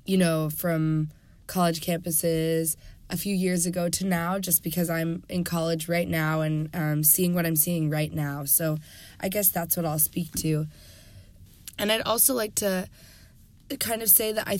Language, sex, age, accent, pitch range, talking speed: English, female, 20-39, American, 160-185 Hz, 180 wpm